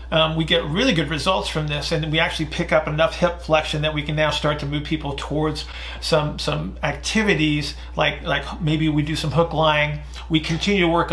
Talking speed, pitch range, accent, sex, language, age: 215 wpm, 150-175 Hz, American, male, English, 40-59